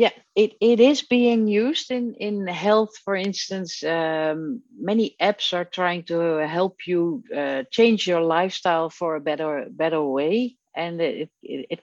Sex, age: female, 50-69